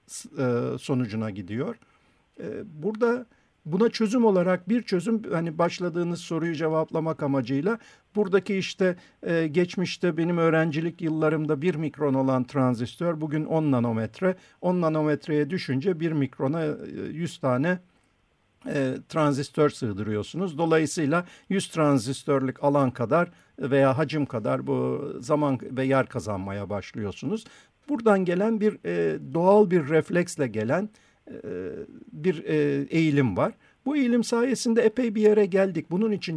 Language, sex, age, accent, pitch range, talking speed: Turkish, male, 50-69, native, 140-180 Hz, 115 wpm